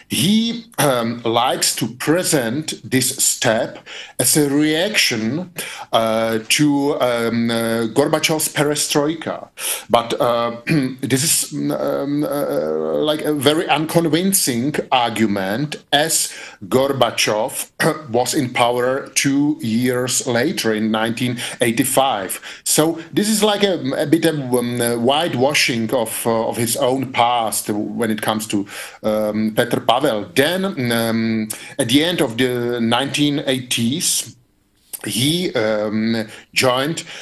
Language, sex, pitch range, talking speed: Polish, male, 115-150 Hz, 115 wpm